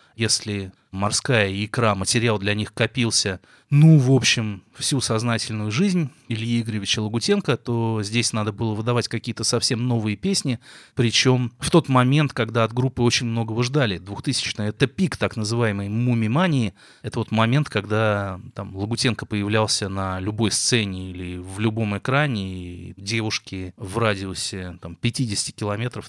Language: Russian